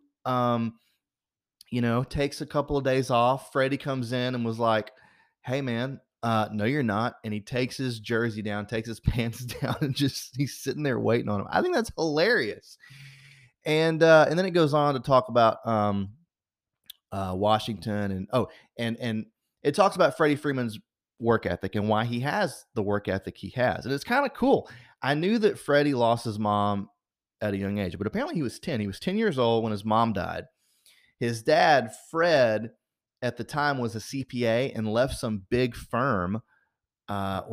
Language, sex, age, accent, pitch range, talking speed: English, male, 30-49, American, 100-130 Hz, 195 wpm